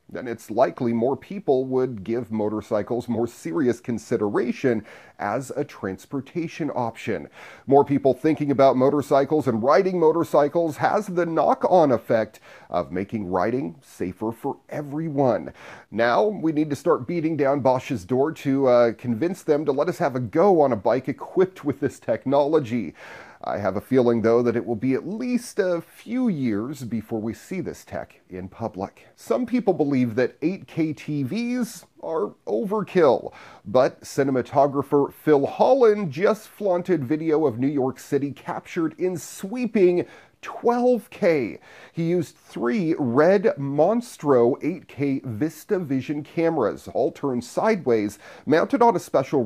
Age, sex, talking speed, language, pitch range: 40-59, male, 145 wpm, English, 120-170 Hz